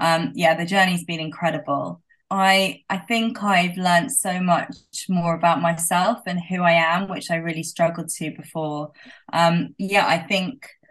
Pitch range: 165-185 Hz